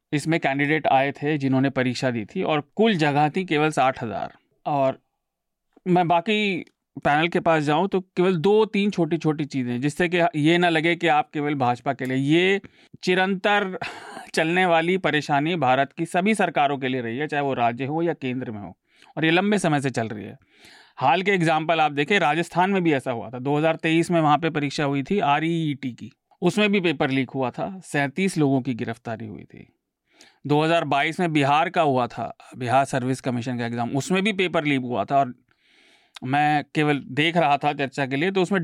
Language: Hindi